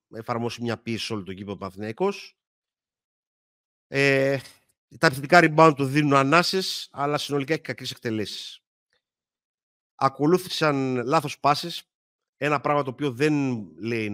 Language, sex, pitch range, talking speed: Greek, male, 115-150 Hz, 120 wpm